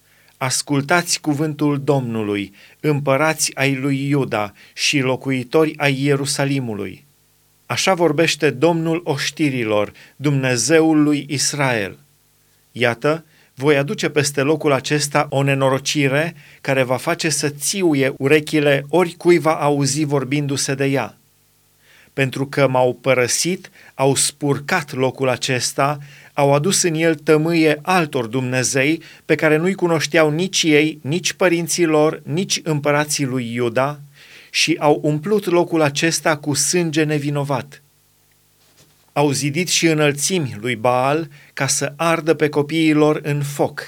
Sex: male